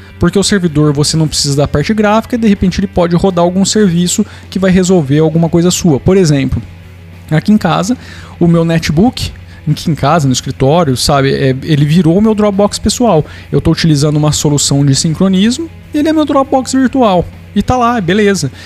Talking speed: 190 wpm